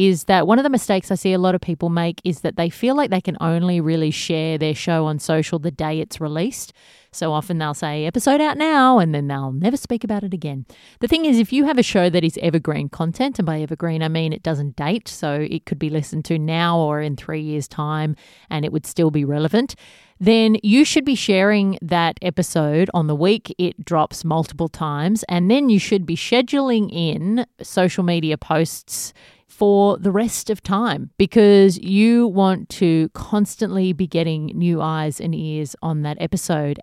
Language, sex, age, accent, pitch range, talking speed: English, female, 30-49, Australian, 160-210 Hz, 205 wpm